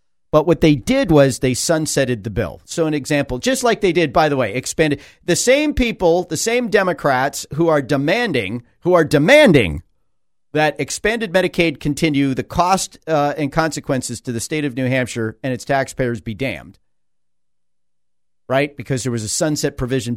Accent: American